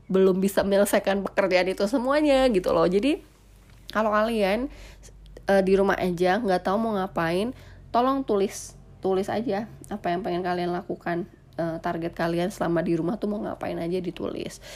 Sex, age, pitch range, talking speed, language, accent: female, 20-39, 170-205 Hz, 155 wpm, Indonesian, native